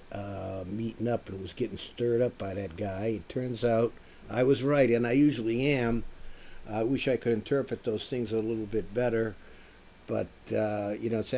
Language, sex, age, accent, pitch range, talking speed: English, male, 60-79, American, 105-120 Hz, 200 wpm